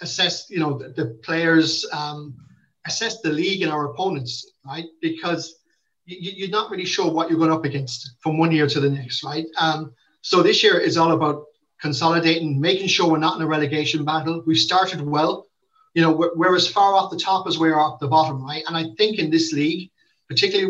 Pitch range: 150-185 Hz